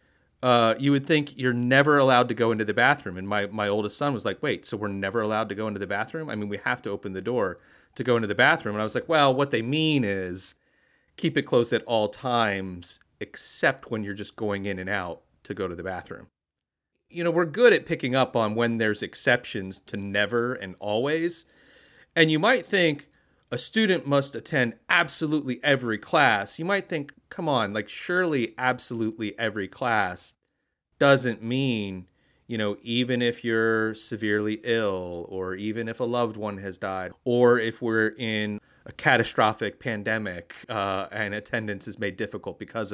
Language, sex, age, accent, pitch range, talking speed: English, male, 30-49, American, 105-130 Hz, 190 wpm